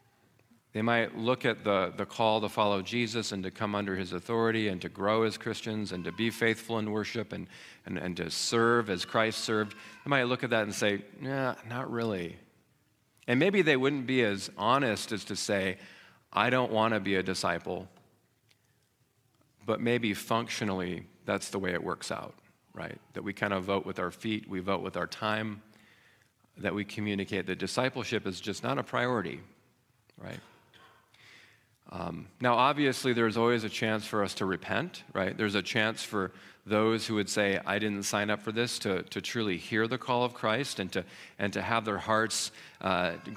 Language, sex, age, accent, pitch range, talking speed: English, male, 40-59, American, 100-115 Hz, 190 wpm